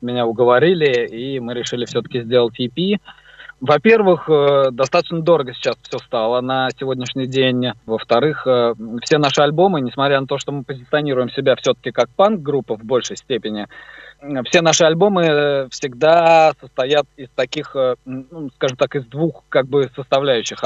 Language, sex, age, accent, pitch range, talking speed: Russian, male, 20-39, native, 115-150 Hz, 140 wpm